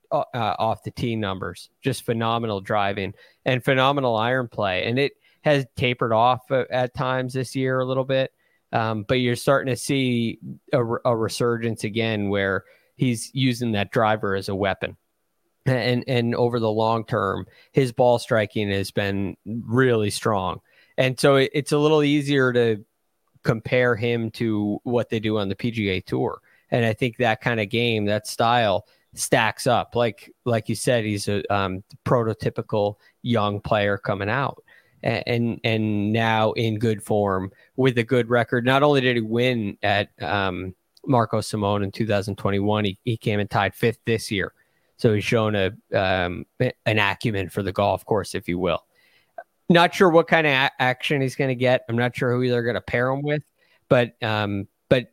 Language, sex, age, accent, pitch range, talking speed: English, male, 20-39, American, 105-125 Hz, 175 wpm